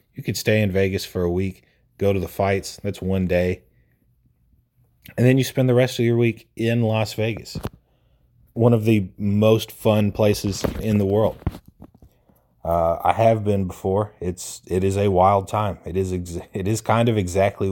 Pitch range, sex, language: 90-110 Hz, male, English